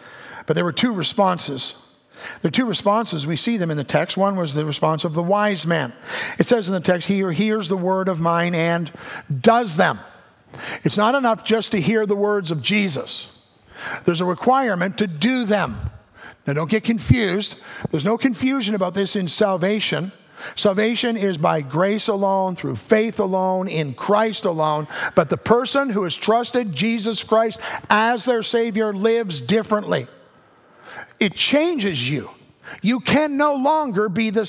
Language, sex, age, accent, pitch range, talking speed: English, male, 50-69, American, 175-230 Hz, 170 wpm